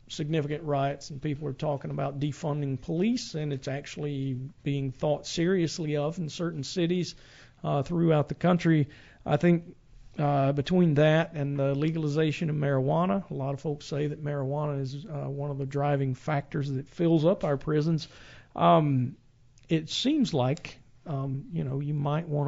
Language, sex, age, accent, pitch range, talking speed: English, male, 50-69, American, 140-160 Hz, 165 wpm